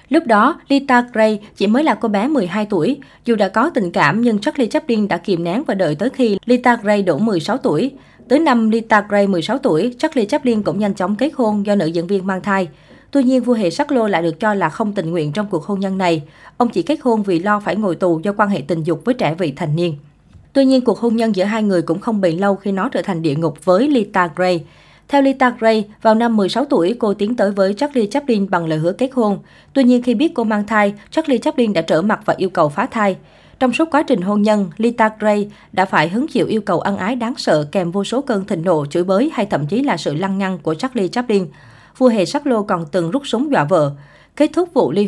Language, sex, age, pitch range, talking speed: Vietnamese, female, 20-39, 185-245 Hz, 255 wpm